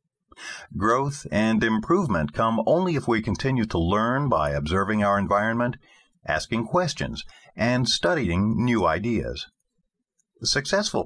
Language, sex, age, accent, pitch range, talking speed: English, male, 50-69, American, 85-125 Hz, 115 wpm